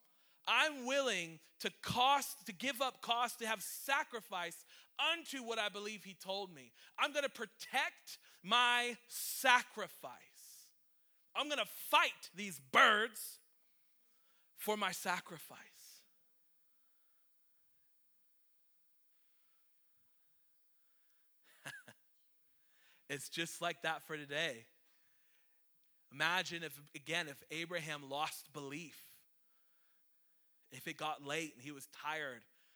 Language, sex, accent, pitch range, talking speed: English, male, American, 140-175 Hz, 100 wpm